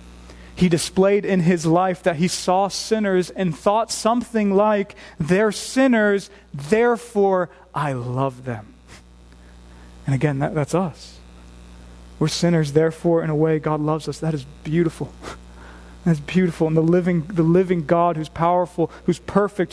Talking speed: 140 wpm